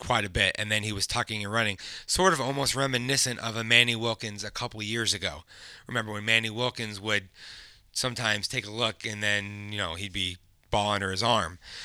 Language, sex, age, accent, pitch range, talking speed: English, male, 30-49, American, 110-135 Hz, 215 wpm